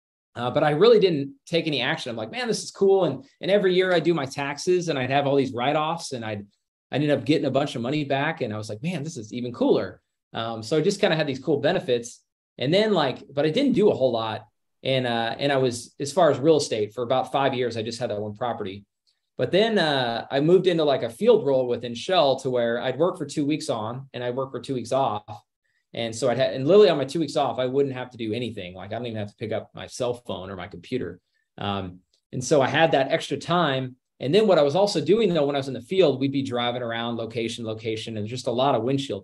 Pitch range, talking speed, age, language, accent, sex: 115-145 Hz, 275 wpm, 20-39, English, American, male